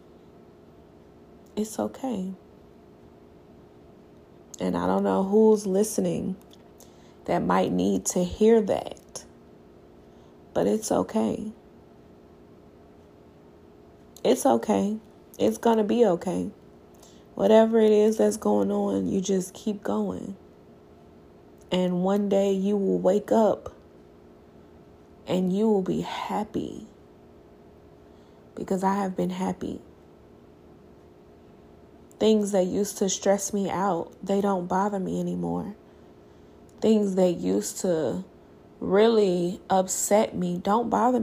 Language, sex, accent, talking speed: English, female, American, 105 wpm